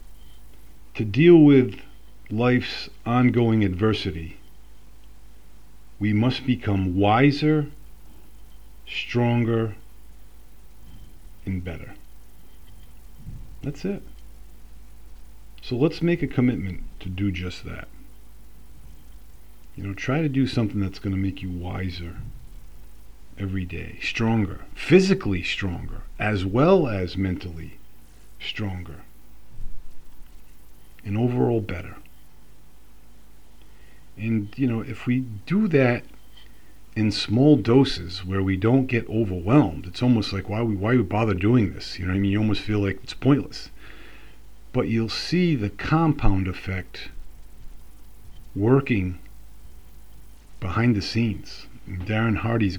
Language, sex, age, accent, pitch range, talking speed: English, male, 50-69, American, 80-115 Hz, 110 wpm